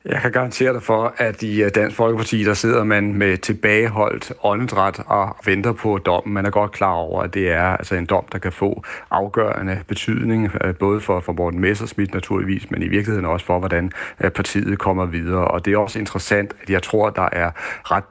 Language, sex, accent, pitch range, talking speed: Danish, male, native, 95-110 Hz, 200 wpm